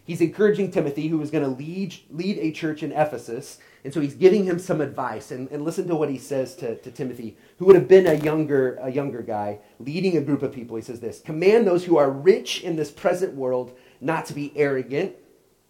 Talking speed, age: 230 wpm, 30-49